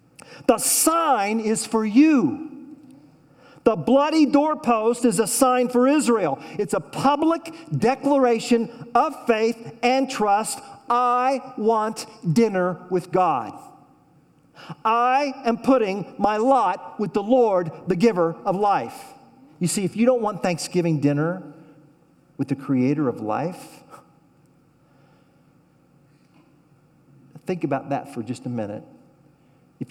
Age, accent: 50-69, American